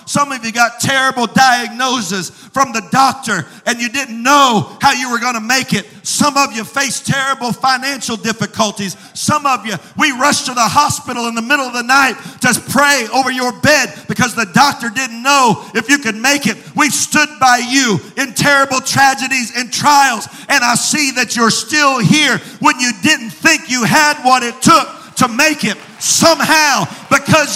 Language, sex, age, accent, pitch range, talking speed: English, male, 50-69, American, 235-295 Hz, 185 wpm